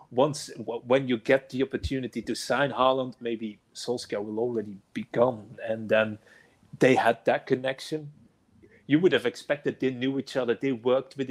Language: English